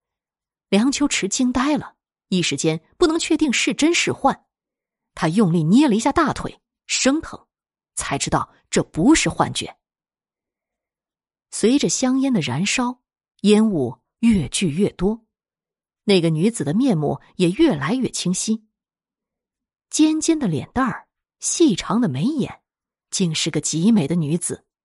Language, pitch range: Chinese, 170-265 Hz